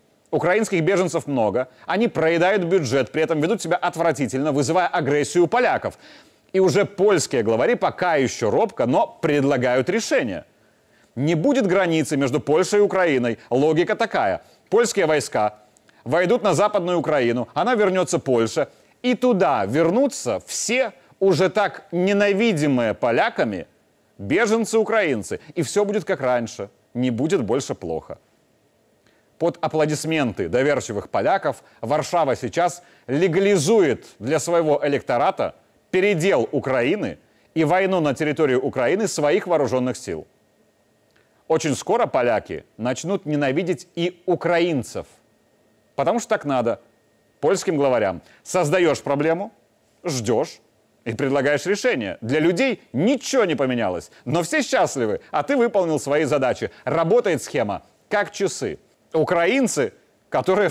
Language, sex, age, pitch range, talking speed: Russian, male, 30-49, 145-205 Hz, 120 wpm